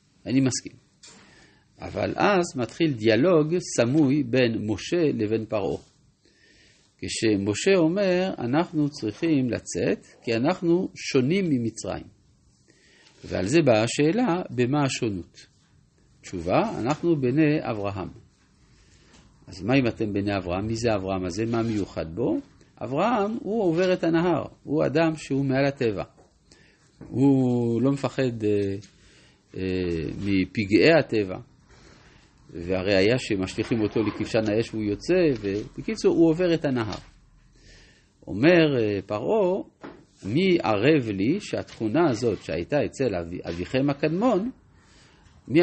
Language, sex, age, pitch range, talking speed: Hebrew, male, 50-69, 105-155 Hz, 110 wpm